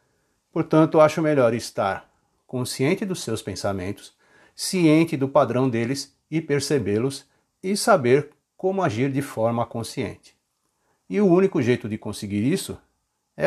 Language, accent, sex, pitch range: Portuguese, Brazilian, male, 115-155 Hz